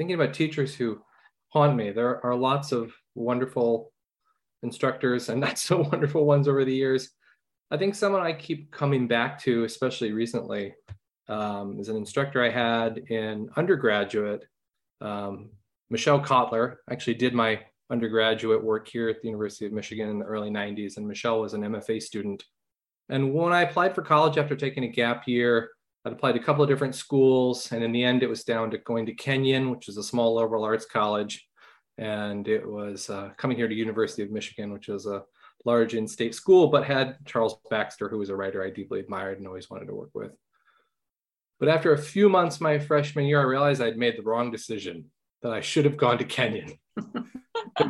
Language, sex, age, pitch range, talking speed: English, male, 20-39, 110-140 Hz, 190 wpm